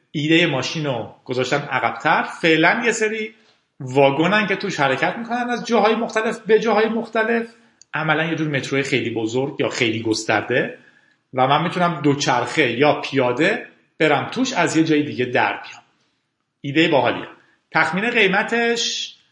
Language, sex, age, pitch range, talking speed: Persian, male, 40-59, 130-180 Hz, 140 wpm